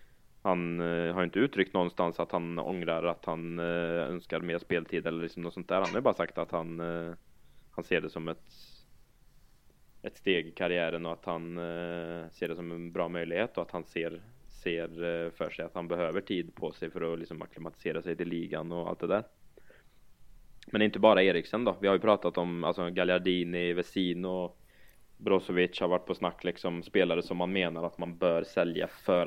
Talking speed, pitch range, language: 195 wpm, 85-90 Hz, Swedish